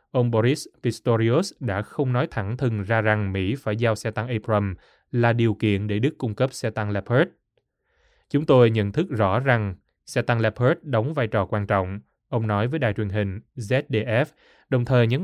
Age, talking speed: 20-39, 195 wpm